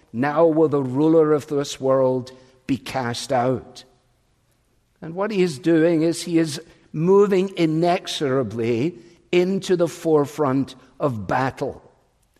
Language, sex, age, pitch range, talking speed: English, male, 60-79, 140-180 Hz, 120 wpm